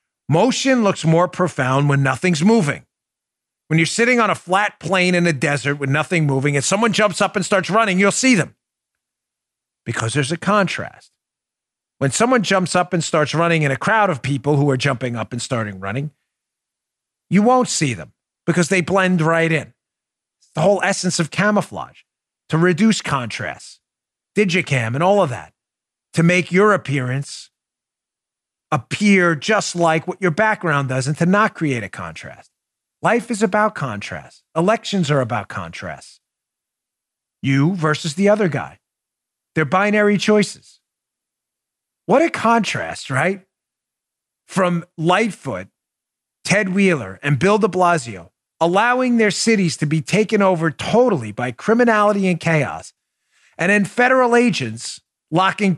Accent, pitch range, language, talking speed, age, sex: American, 145-205 Hz, English, 145 wpm, 40-59, male